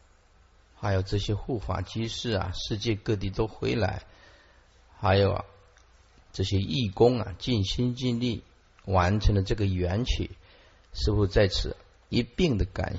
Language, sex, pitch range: Chinese, male, 85-110 Hz